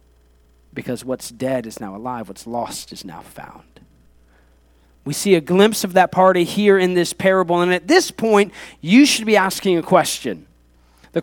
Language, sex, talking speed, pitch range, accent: English, male, 175 wpm, 175-250 Hz, American